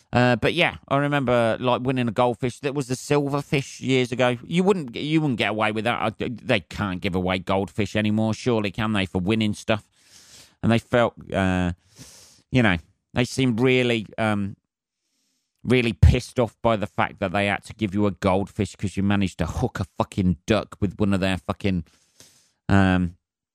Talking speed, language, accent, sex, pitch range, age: 195 wpm, English, British, male, 95-125 Hz, 30-49